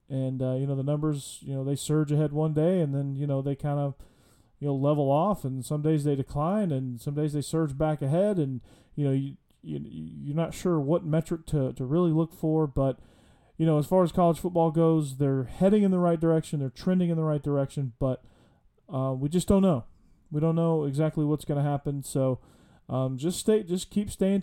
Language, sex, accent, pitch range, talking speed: English, male, American, 135-165 Hz, 230 wpm